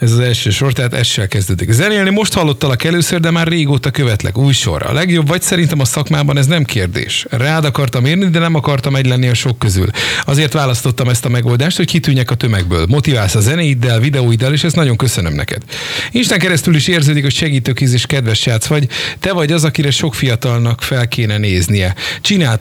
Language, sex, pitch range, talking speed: Hungarian, male, 115-145 Hz, 200 wpm